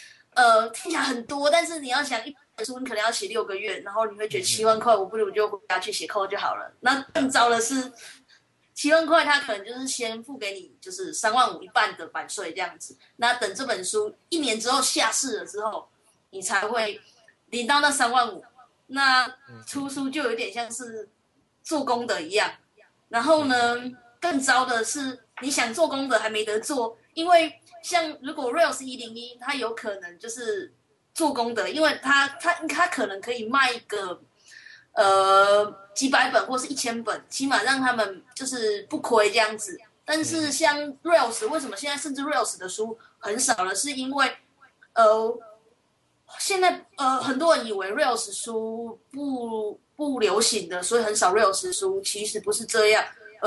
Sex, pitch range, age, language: female, 220-300 Hz, 20-39, Chinese